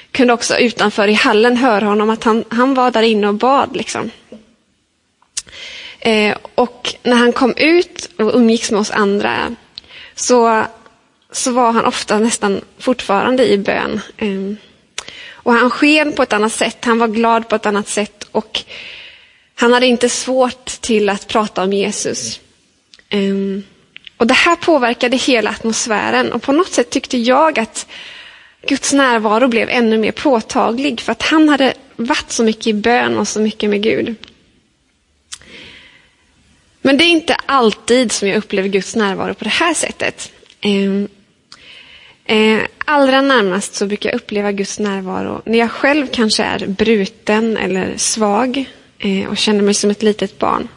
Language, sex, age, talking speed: Swedish, female, 20-39, 155 wpm